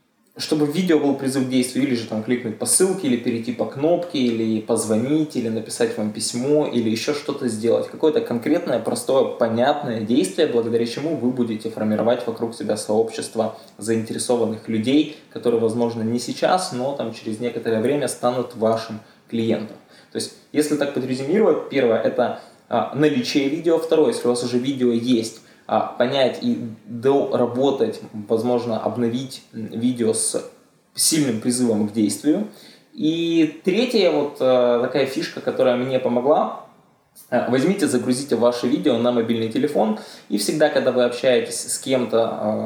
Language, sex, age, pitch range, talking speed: Russian, male, 20-39, 115-135 Hz, 145 wpm